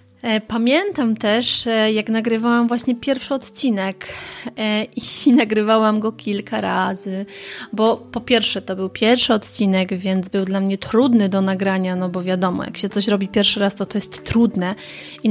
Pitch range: 195-235 Hz